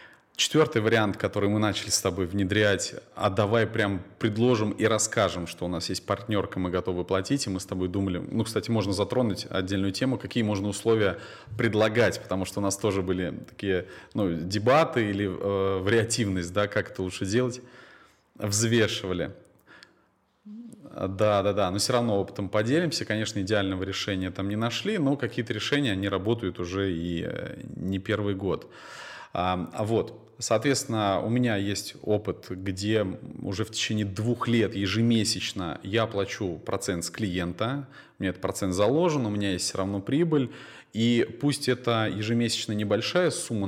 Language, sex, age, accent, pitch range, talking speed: Russian, male, 30-49, native, 95-115 Hz, 155 wpm